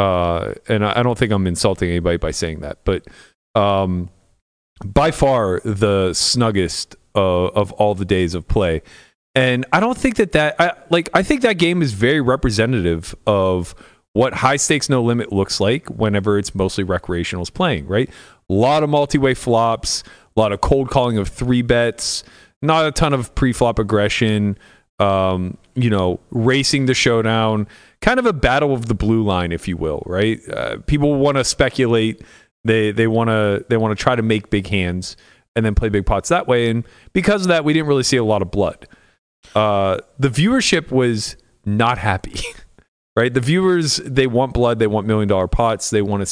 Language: English